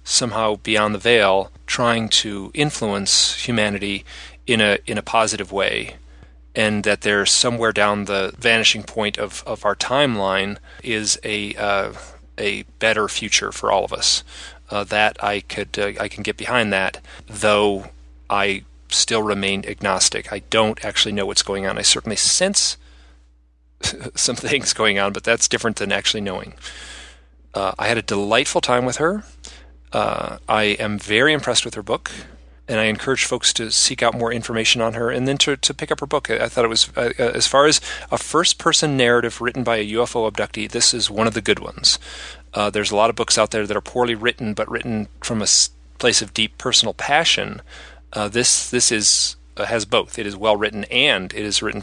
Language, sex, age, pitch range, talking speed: English, male, 30-49, 95-115 Hz, 190 wpm